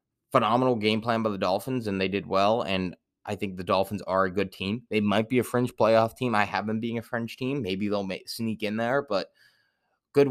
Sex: male